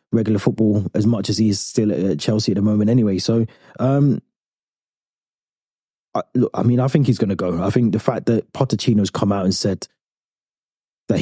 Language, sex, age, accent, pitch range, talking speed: English, male, 20-39, British, 95-110 Hz, 200 wpm